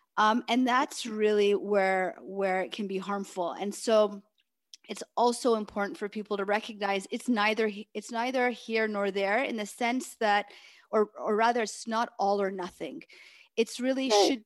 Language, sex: English, female